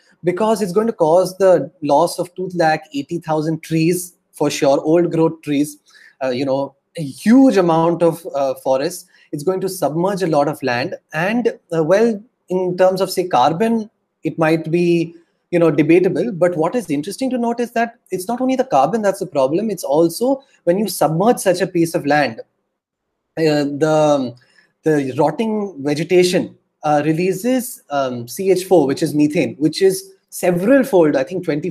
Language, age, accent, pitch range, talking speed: English, 30-49, Indian, 150-190 Hz, 170 wpm